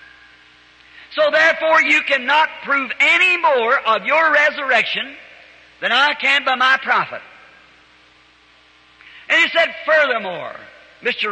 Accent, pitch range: American, 205-310 Hz